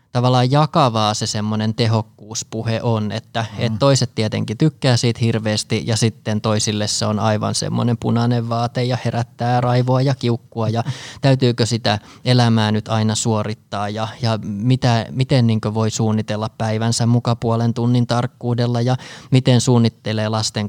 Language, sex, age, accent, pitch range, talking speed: Finnish, male, 20-39, native, 110-125 Hz, 140 wpm